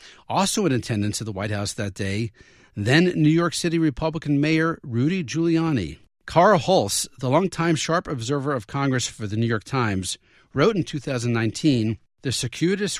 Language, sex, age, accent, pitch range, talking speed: English, male, 40-59, American, 115-155 Hz, 160 wpm